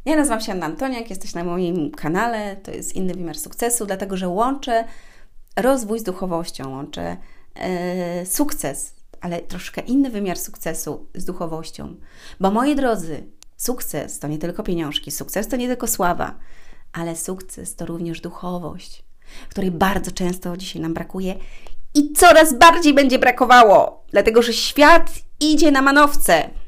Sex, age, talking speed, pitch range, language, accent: female, 30-49, 145 wpm, 175-240 Hz, Polish, native